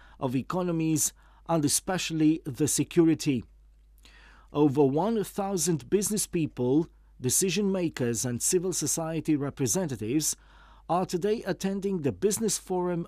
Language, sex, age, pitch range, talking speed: English, male, 40-59, 140-190 Hz, 100 wpm